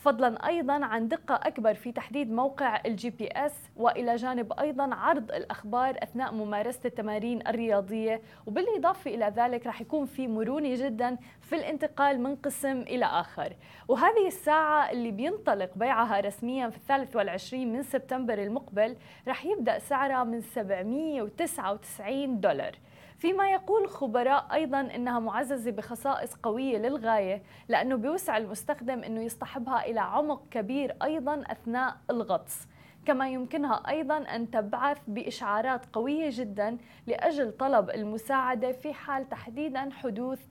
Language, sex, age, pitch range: Arabic, female, 20-39, 230-280 Hz